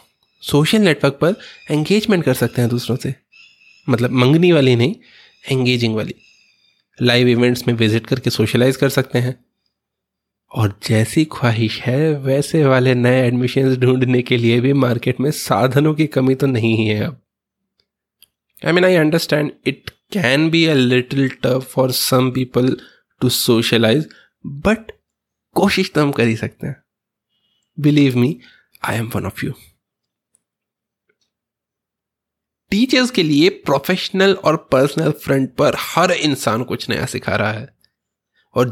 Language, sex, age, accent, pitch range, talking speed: Hindi, male, 20-39, native, 125-160 Hz, 140 wpm